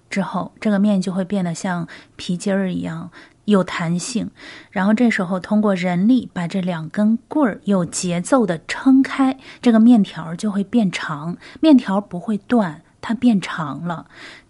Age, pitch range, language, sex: 30-49, 175-220 Hz, Chinese, female